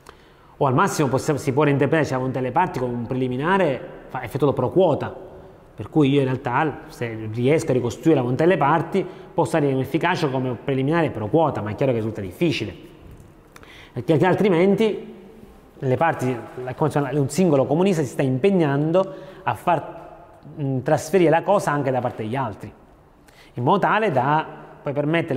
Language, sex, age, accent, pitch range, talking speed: Italian, male, 30-49, native, 130-180 Hz, 175 wpm